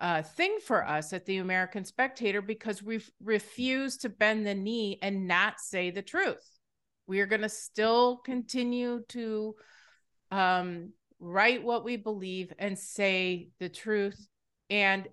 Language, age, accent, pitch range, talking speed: English, 30-49, American, 175-220 Hz, 145 wpm